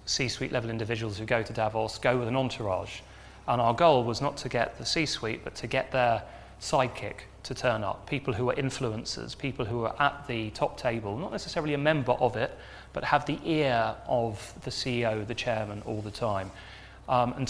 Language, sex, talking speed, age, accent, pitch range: English, male, 200 wpm, 30-49, British, 110-135 Hz